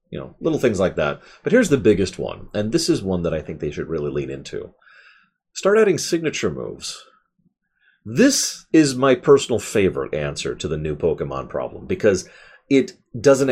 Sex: male